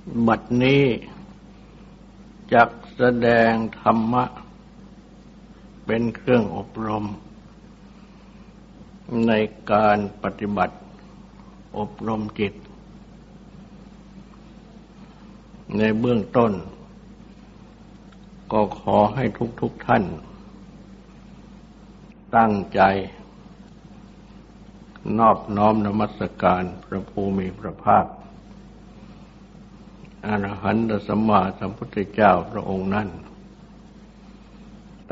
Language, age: Thai, 60-79